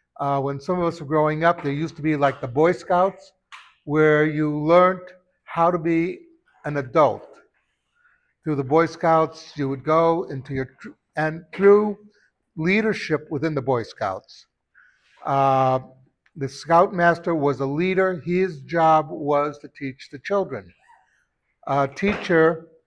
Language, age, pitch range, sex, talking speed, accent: English, 60-79, 140-175 Hz, male, 145 wpm, American